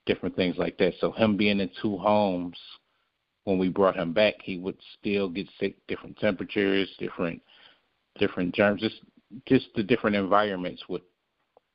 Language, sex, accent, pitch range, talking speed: English, male, American, 95-110 Hz, 160 wpm